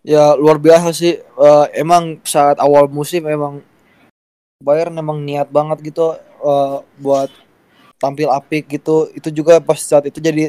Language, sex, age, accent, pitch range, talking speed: Indonesian, male, 20-39, native, 145-160 Hz, 150 wpm